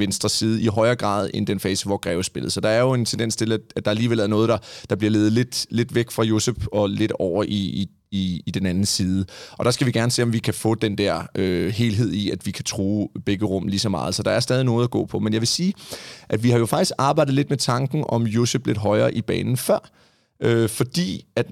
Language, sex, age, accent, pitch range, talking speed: Danish, male, 30-49, native, 105-125 Hz, 260 wpm